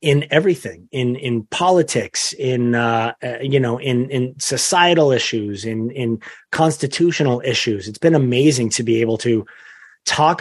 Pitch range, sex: 115-145 Hz, male